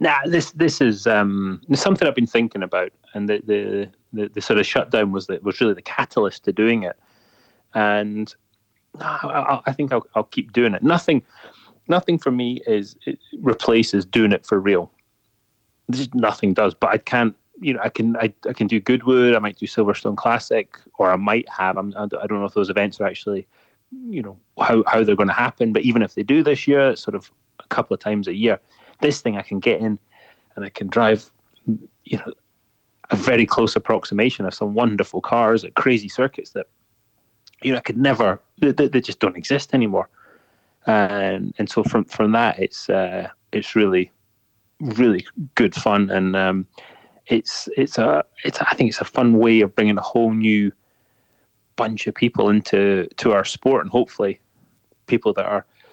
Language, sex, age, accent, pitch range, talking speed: English, male, 30-49, British, 105-125 Hz, 200 wpm